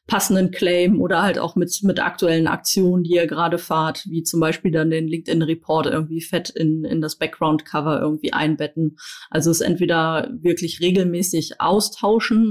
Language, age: German, 30-49